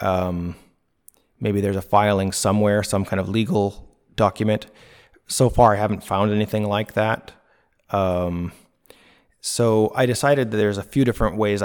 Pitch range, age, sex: 95-115 Hz, 30-49, male